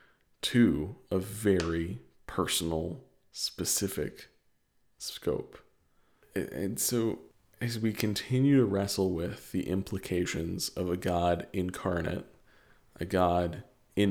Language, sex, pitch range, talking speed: English, male, 90-100 Hz, 100 wpm